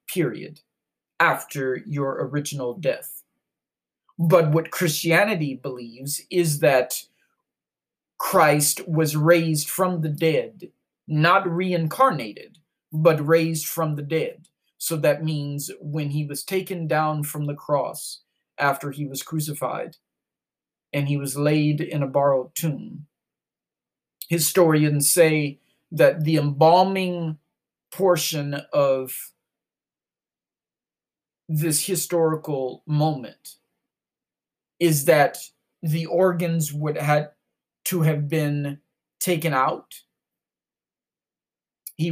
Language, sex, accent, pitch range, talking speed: English, male, American, 145-165 Hz, 100 wpm